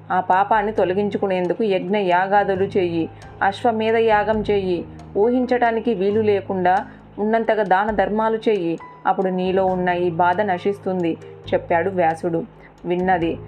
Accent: native